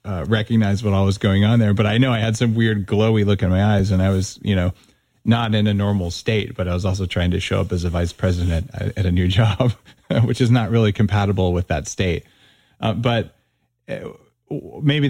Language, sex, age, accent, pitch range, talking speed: English, male, 30-49, American, 95-115 Hz, 230 wpm